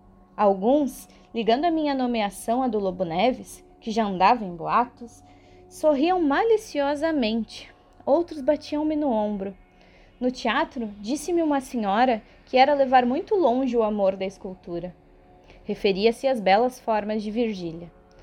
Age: 20-39